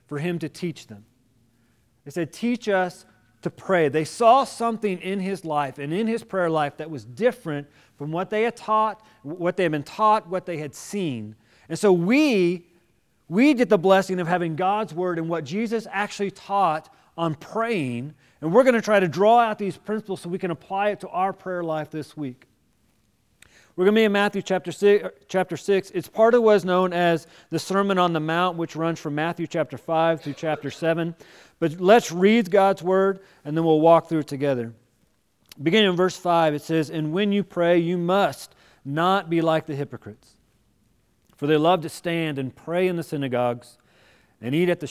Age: 40-59